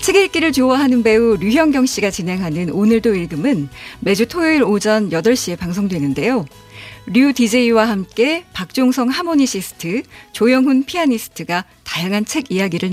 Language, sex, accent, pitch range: Korean, female, native, 195-270 Hz